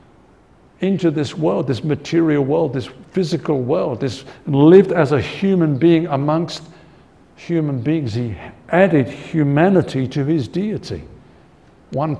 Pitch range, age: 125-165 Hz, 60-79